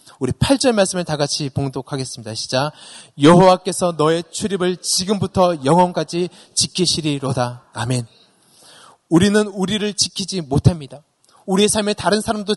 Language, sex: Korean, male